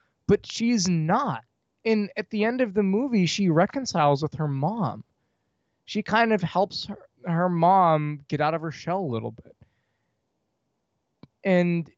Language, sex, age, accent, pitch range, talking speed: English, male, 20-39, American, 135-200 Hz, 155 wpm